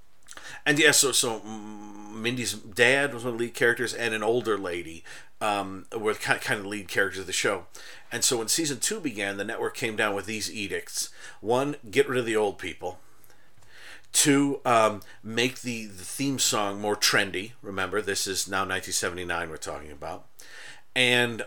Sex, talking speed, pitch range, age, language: male, 185 wpm, 95-120 Hz, 40-59, English